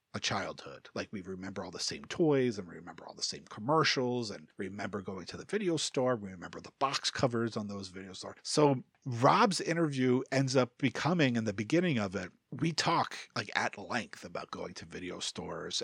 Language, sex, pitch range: English, male, 105-135 Hz